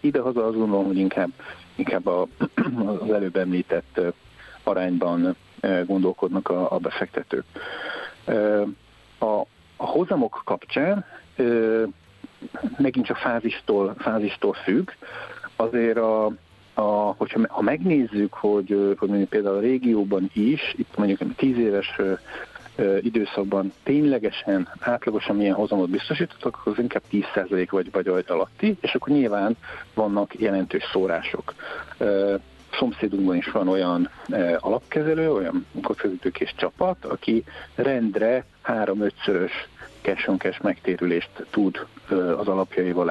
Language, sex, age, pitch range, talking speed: Hungarian, male, 50-69, 95-125 Hz, 105 wpm